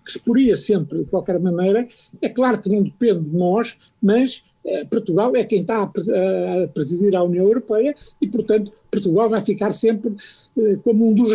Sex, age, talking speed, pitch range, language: male, 60-79, 180 wpm, 165-215 Hz, Portuguese